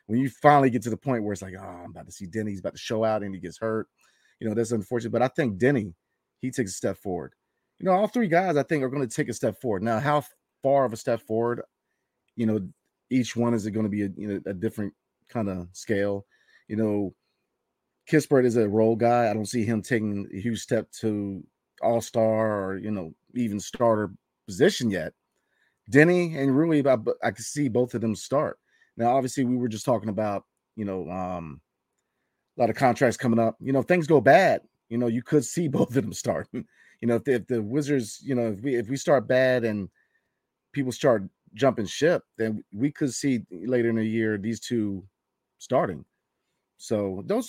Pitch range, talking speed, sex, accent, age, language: 105-130 Hz, 220 wpm, male, American, 30-49, English